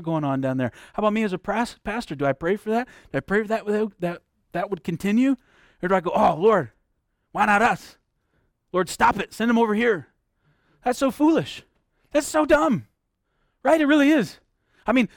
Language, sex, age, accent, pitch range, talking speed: English, male, 40-59, American, 180-255 Hz, 205 wpm